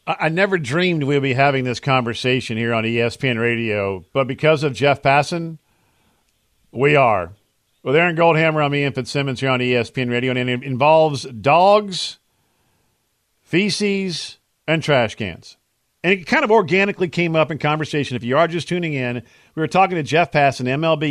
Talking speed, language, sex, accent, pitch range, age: 170 wpm, English, male, American, 125-155 Hz, 50-69